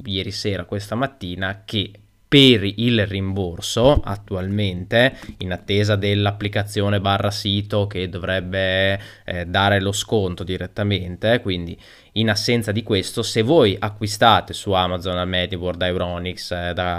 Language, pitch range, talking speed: Italian, 95-115 Hz, 130 wpm